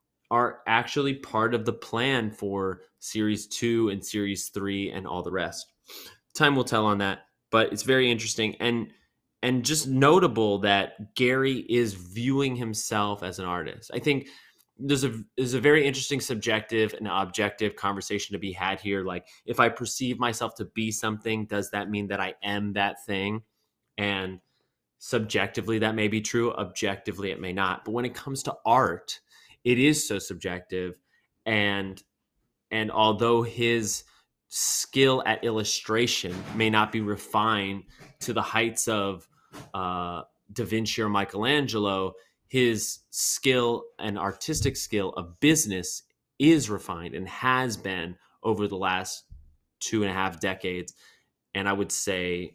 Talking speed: 150 wpm